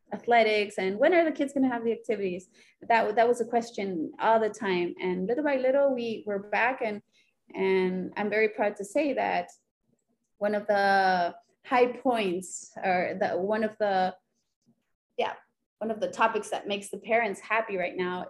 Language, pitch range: English, 190-245 Hz